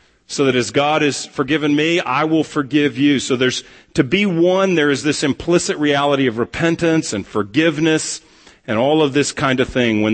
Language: English